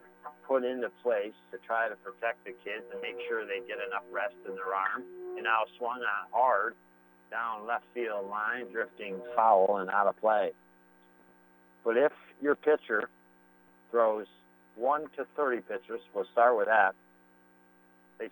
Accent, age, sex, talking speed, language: American, 50-69, male, 155 wpm, English